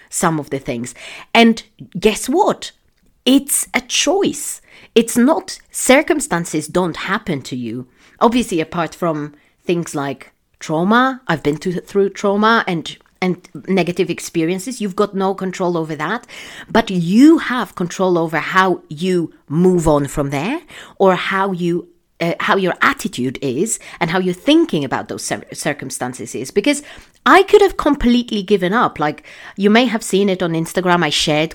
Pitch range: 160-230 Hz